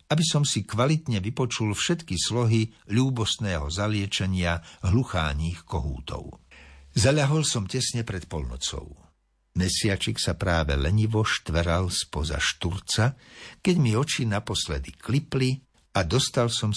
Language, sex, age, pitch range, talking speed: Slovak, male, 60-79, 80-115 Hz, 110 wpm